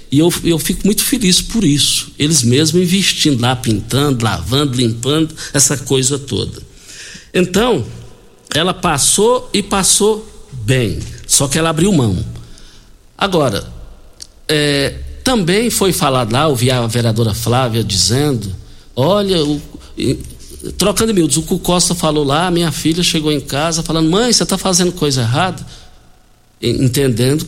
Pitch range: 120-185 Hz